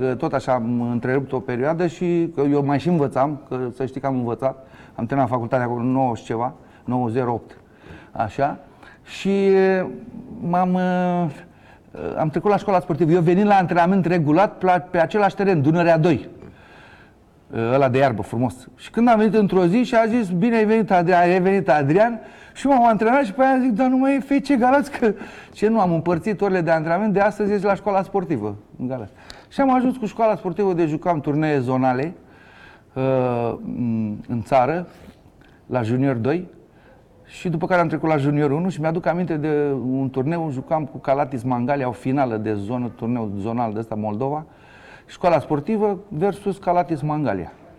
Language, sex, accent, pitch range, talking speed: Romanian, male, native, 130-195 Hz, 180 wpm